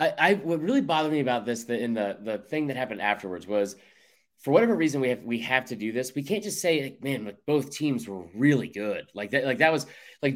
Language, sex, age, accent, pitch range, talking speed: English, male, 30-49, American, 115-155 Hz, 255 wpm